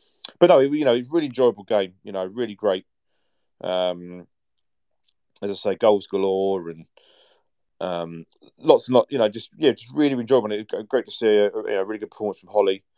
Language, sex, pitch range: English, male, 95-145 Hz